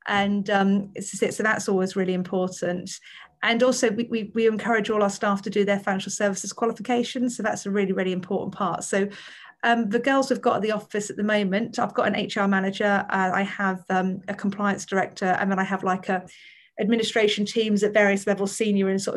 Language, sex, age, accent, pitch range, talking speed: English, female, 40-59, British, 195-225 Hz, 210 wpm